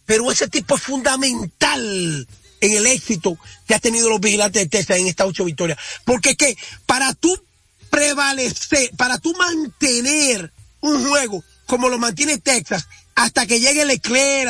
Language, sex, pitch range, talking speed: Spanish, male, 200-275 Hz, 160 wpm